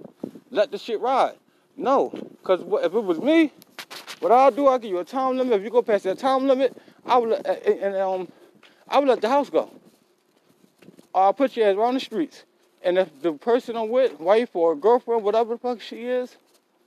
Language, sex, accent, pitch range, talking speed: English, male, American, 185-255 Hz, 205 wpm